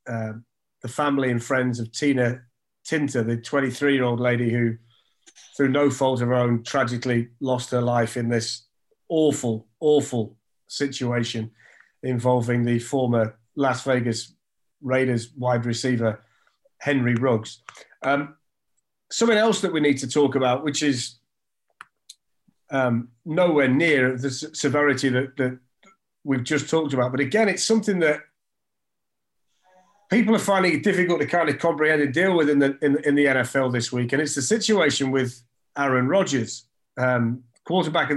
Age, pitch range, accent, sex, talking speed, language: 30-49, 125-155 Hz, British, male, 150 wpm, English